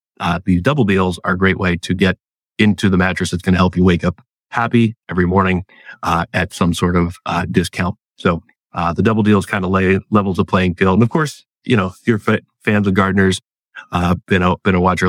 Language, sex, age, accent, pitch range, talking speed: English, male, 40-59, American, 90-100 Hz, 225 wpm